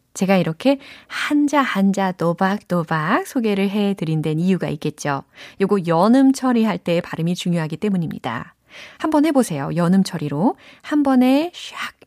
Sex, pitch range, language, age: female, 165-255 Hz, Korean, 30-49